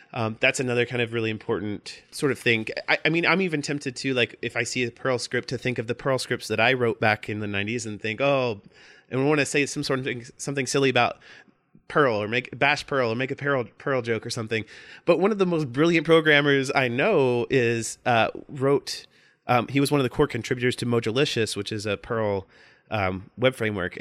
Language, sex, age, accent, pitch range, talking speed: English, male, 30-49, American, 115-145 Hz, 235 wpm